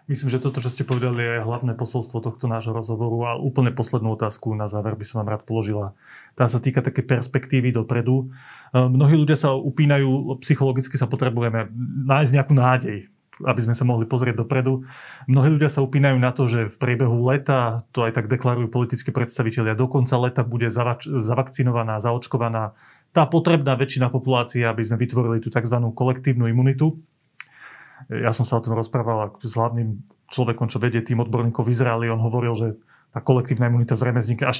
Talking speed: 175 wpm